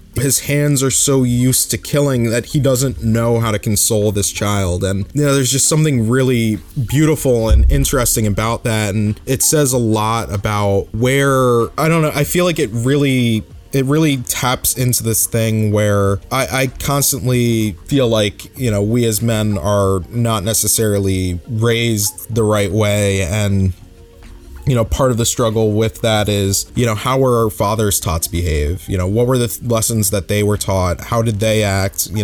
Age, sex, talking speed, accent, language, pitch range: 20-39, male, 190 wpm, American, English, 100-125 Hz